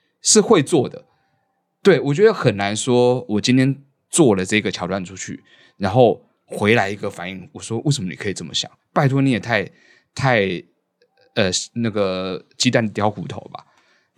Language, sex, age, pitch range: Chinese, male, 20-39, 100-140 Hz